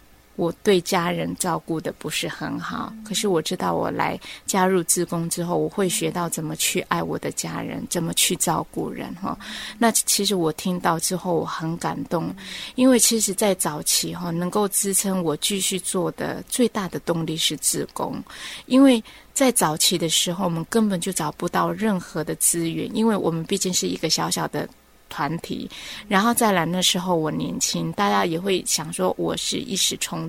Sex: female